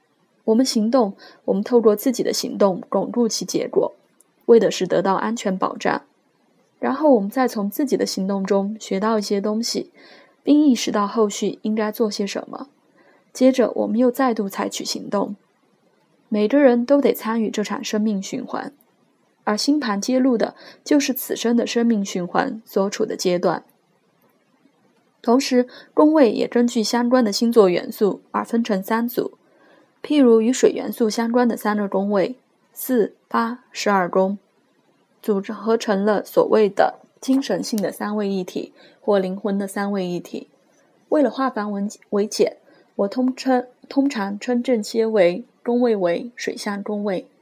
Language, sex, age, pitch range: Chinese, female, 20-39, 205-250 Hz